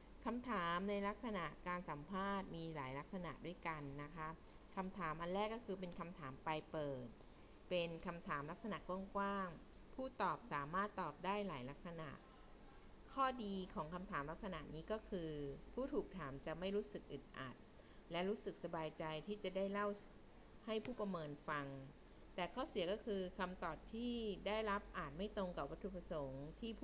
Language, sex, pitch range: Thai, female, 155-205 Hz